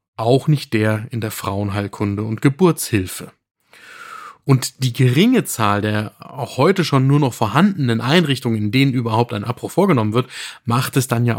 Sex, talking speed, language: male, 165 wpm, German